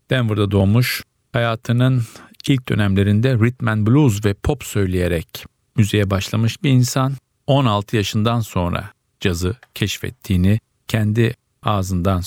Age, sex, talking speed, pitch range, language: 50-69, male, 105 wpm, 105-125 Hz, Turkish